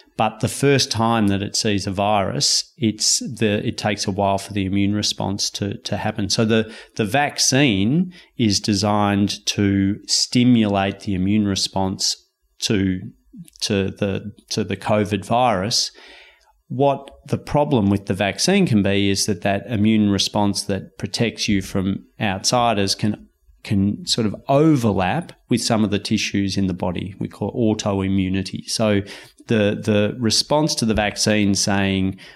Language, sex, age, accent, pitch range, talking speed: English, male, 30-49, Australian, 100-120 Hz, 155 wpm